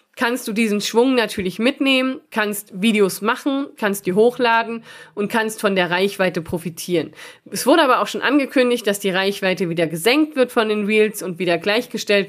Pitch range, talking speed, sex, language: 185-235 Hz, 175 wpm, female, German